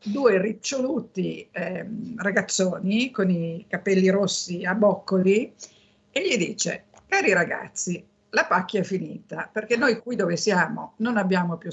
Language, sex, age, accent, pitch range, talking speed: Italian, female, 50-69, native, 180-220 Hz, 140 wpm